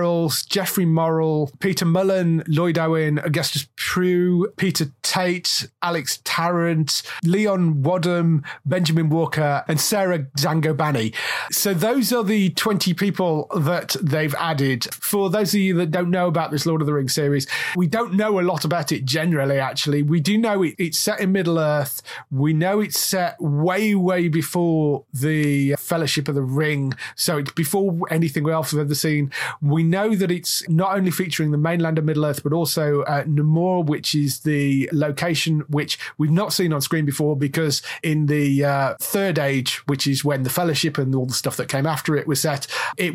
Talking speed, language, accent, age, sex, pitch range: 180 wpm, English, British, 30-49, male, 140-175 Hz